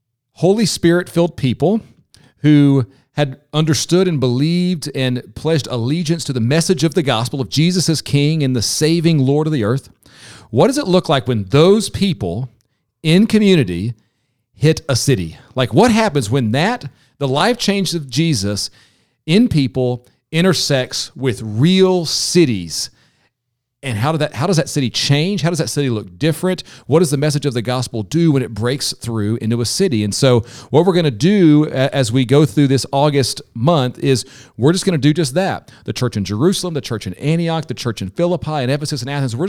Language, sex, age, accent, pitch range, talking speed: English, male, 40-59, American, 125-165 Hz, 190 wpm